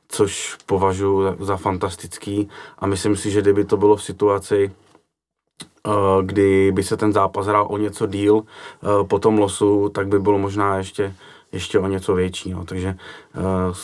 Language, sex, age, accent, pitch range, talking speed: Czech, male, 30-49, native, 95-105 Hz, 160 wpm